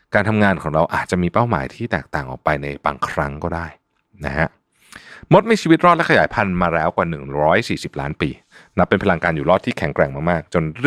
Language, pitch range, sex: Thai, 75-105 Hz, male